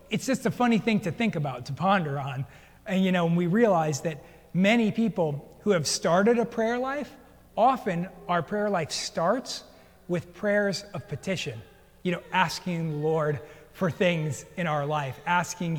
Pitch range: 155-210 Hz